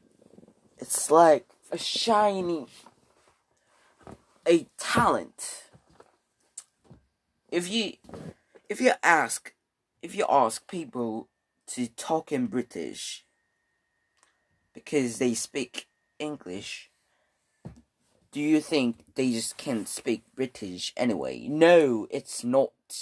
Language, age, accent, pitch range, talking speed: English, 20-39, British, 115-160 Hz, 90 wpm